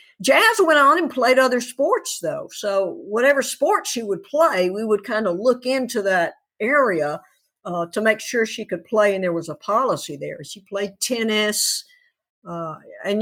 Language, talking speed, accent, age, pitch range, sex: English, 180 wpm, American, 60-79, 180-235 Hz, female